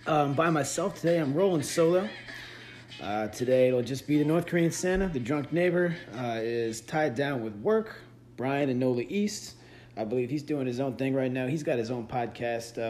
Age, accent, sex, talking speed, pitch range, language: 30-49, American, male, 205 wpm, 120-165 Hz, English